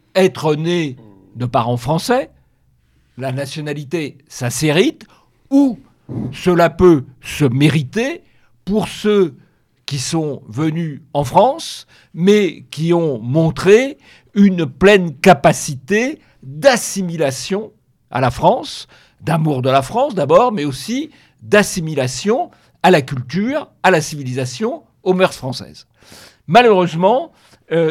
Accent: French